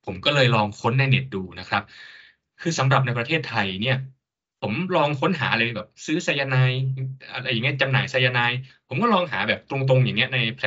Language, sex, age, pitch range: Thai, male, 20-39, 105-135 Hz